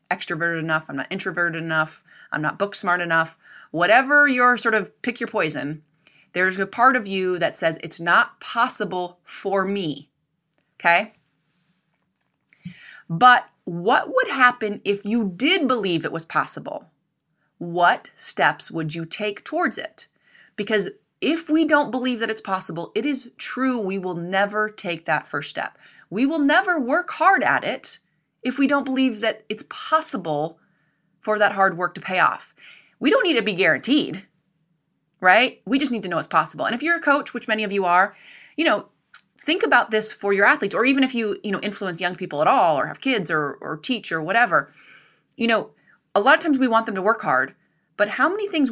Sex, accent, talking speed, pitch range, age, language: female, American, 190 wpm, 170-255 Hz, 30-49, English